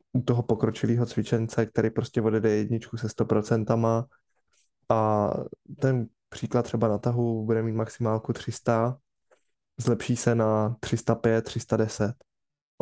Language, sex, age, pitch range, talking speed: Czech, male, 20-39, 115-125 Hz, 110 wpm